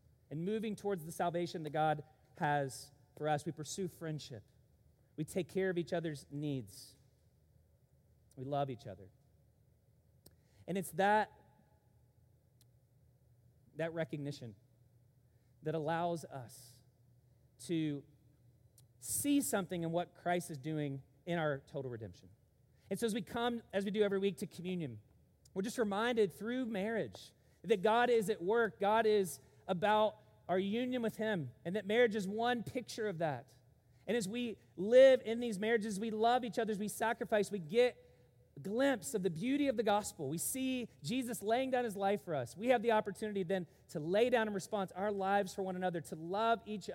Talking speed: 165 wpm